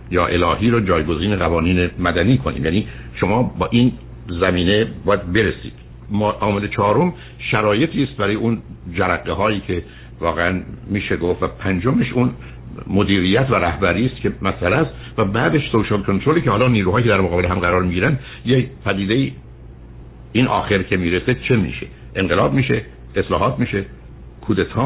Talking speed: 150 wpm